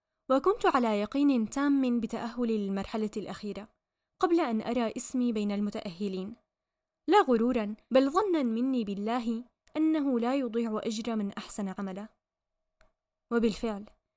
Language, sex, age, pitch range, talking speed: Arabic, female, 10-29, 210-265 Hz, 115 wpm